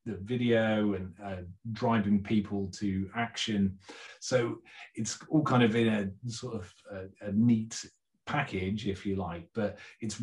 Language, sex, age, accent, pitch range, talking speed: English, male, 30-49, British, 95-115 Hz, 155 wpm